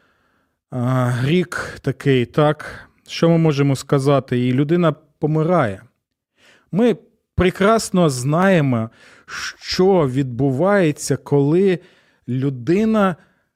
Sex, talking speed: male, 75 wpm